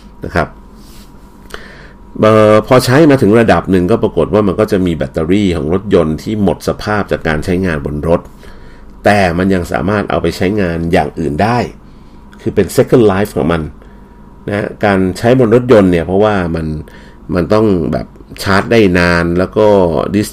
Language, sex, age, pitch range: Thai, male, 60-79, 80-100 Hz